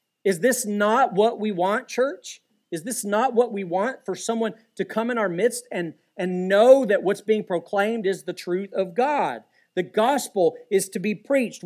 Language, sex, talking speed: English, male, 195 wpm